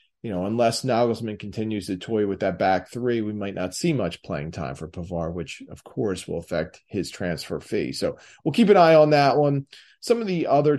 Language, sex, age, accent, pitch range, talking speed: English, male, 30-49, American, 100-130 Hz, 225 wpm